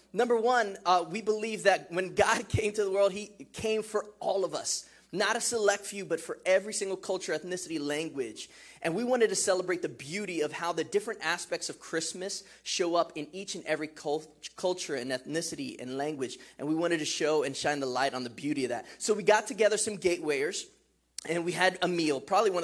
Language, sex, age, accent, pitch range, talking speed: English, male, 20-39, American, 150-200 Hz, 215 wpm